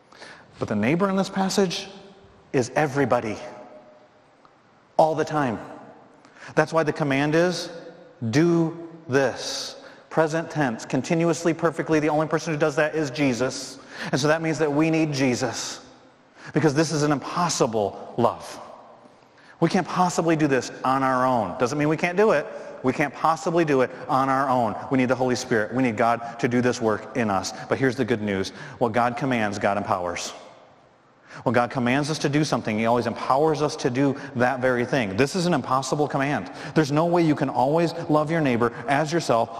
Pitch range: 125-160 Hz